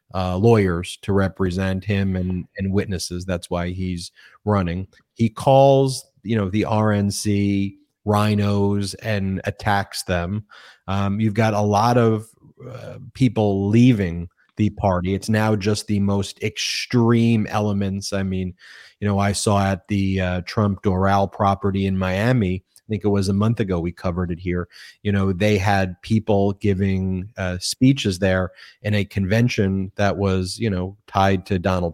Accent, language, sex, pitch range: American, English, male, 95-105 Hz